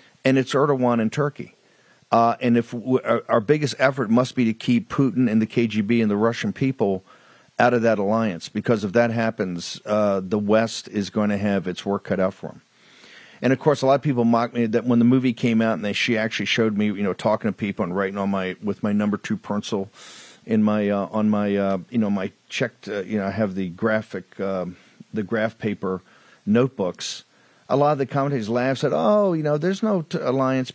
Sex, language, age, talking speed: male, English, 50-69, 230 wpm